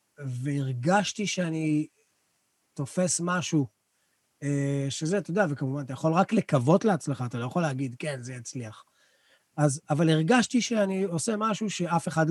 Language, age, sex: Hebrew, 30-49, male